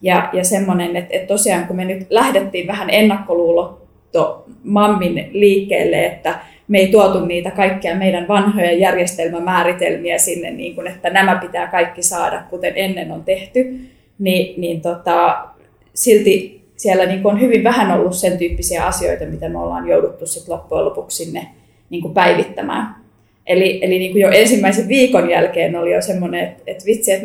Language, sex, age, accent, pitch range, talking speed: Finnish, female, 20-39, native, 175-200 Hz, 160 wpm